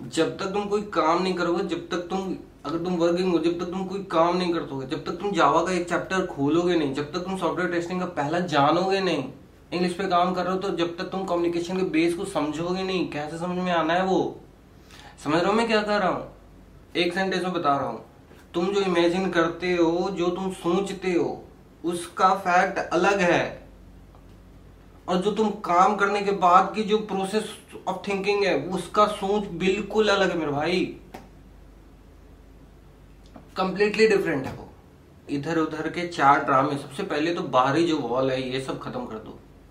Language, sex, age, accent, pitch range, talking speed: Hindi, male, 20-39, native, 145-185 Hz, 195 wpm